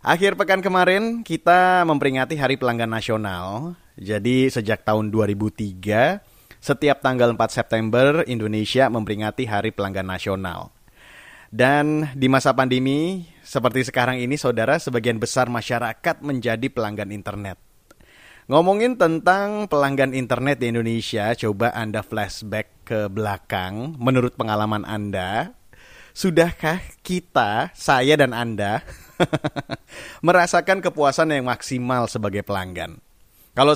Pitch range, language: 110-140 Hz, Indonesian